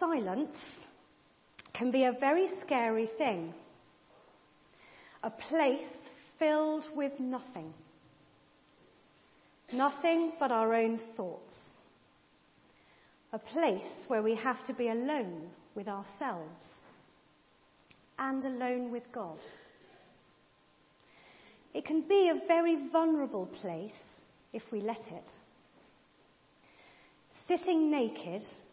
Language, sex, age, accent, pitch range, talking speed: English, female, 40-59, British, 200-290 Hz, 90 wpm